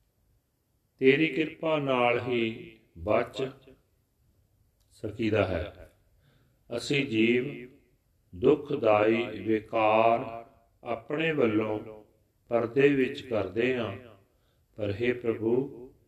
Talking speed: 75 wpm